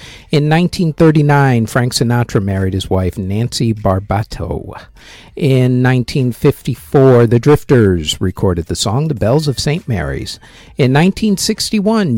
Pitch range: 110-155 Hz